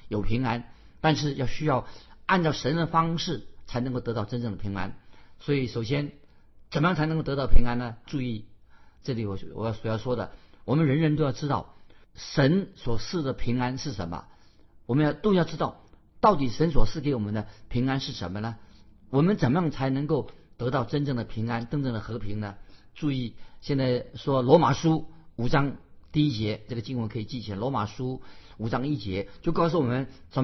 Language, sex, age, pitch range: Chinese, male, 50-69, 110-150 Hz